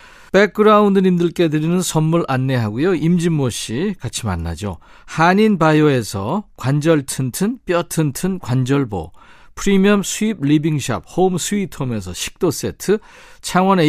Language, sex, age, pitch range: Korean, male, 50-69, 125-175 Hz